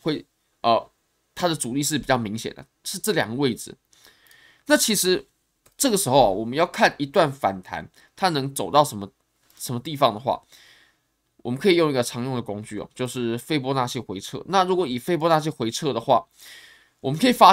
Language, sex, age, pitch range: Chinese, male, 20-39, 120-185 Hz